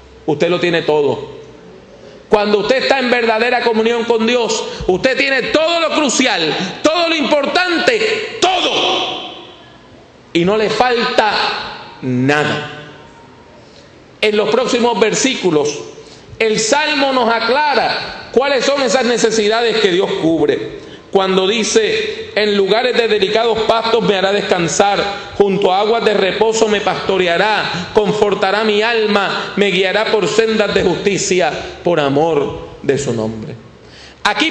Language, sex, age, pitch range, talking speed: English, male, 40-59, 200-280 Hz, 125 wpm